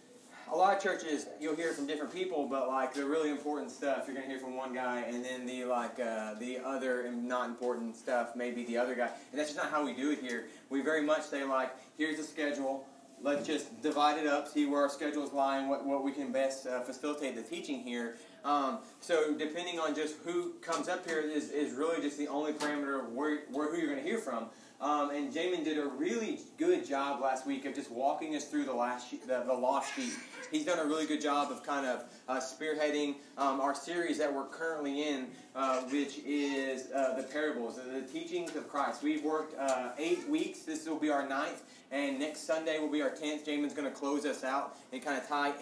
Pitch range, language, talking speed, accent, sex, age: 130-155 Hz, English, 235 wpm, American, male, 30-49